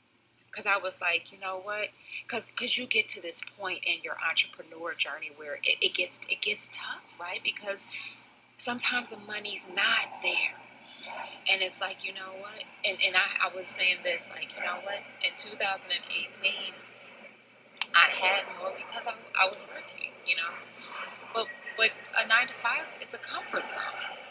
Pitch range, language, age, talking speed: 190-275 Hz, English, 30-49, 170 wpm